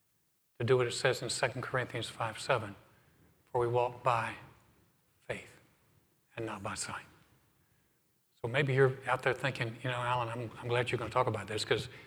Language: English